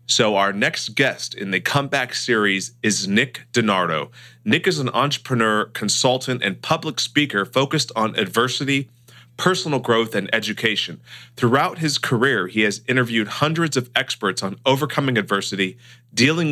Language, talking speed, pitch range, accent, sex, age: English, 140 wpm, 105-135 Hz, American, male, 30-49